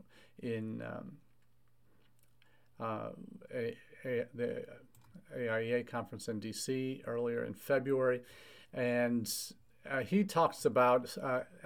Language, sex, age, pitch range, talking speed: English, male, 40-59, 115-125 Hz, 100 wpm